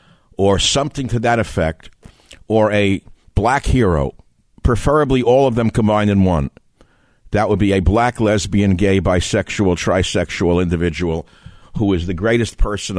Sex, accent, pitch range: male, American, 90-110 Hz